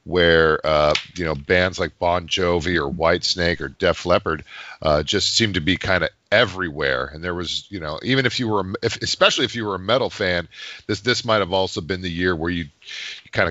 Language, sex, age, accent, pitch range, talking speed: English, male, 50-69, American, 85-105 Hz, 220 wpm